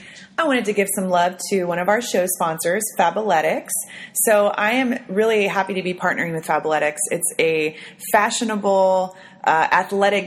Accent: American